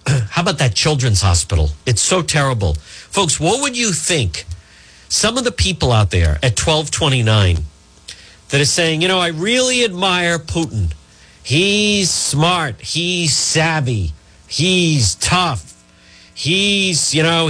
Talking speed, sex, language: 135 wpm, male, English